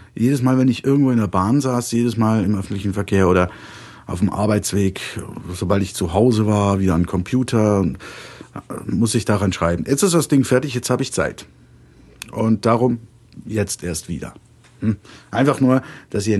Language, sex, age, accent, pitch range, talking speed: German, male, 50-69, German, 100-125 Hz, 180 wpm